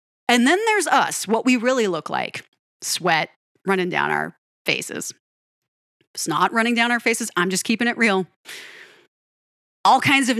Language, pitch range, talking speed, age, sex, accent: English, 180-245 Hz, 160 wpm, 30-49, female, American